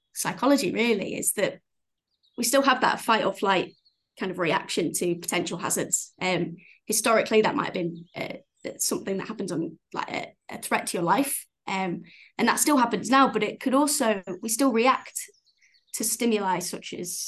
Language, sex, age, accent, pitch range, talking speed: English, female, 20-39, British, 185-235 Hz, 175 wpm